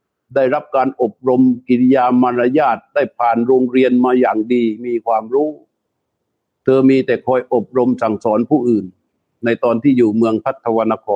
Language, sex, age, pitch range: Thai, male, 60-79, 120-150 Hz